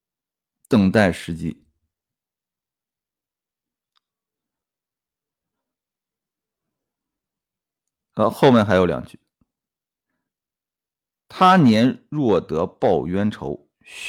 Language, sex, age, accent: Chinese, male, 50-69, native